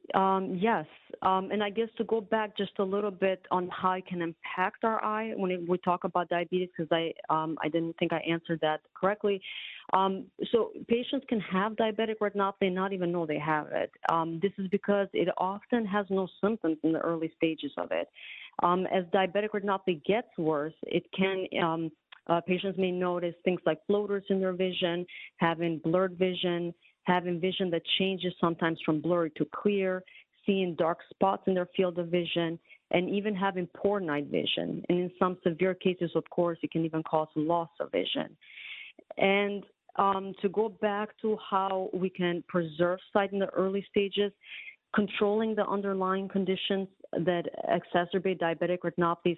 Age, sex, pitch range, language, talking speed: 30-49, female, 170-200 Hz, English, 175 wpm